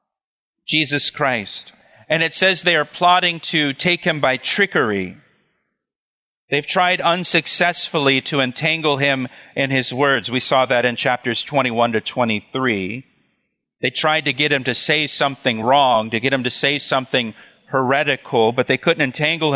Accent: American